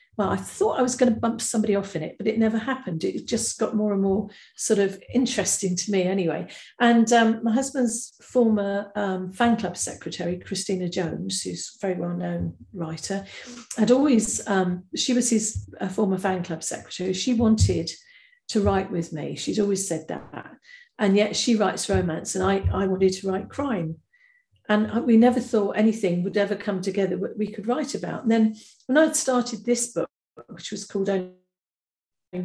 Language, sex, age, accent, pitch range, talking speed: English, female, 50-69, British, 190-235 Hz, 185 wpm